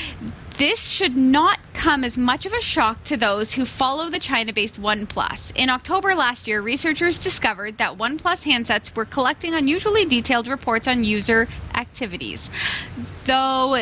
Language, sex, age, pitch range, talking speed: English, female, 10-29, 230-300 Hz, 150 wpm